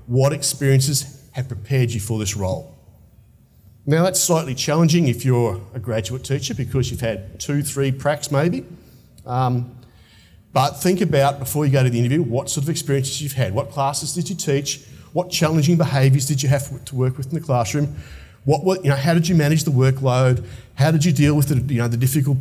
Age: 40-59